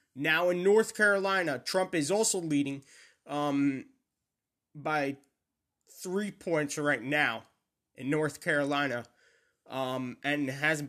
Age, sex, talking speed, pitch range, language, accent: 20-39, male, 110 wpm, 145-190 Hz, English, American